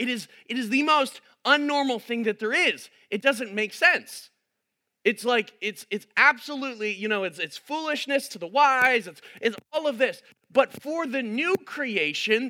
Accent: American